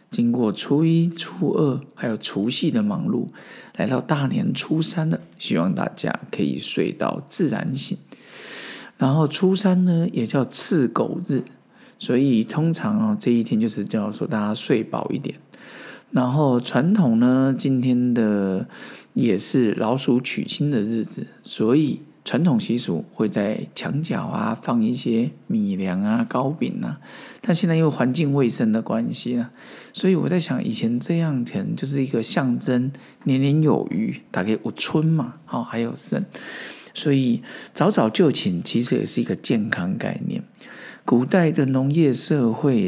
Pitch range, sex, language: 120-190 Hz, male, Chinese